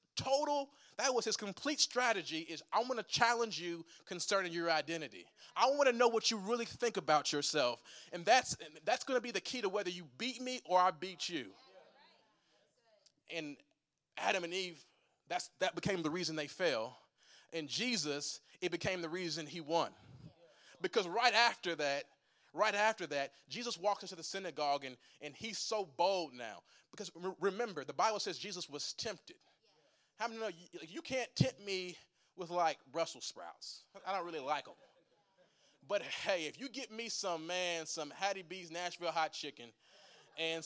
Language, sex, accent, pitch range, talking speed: English, male, American, 165-220 Hz, 175 wpm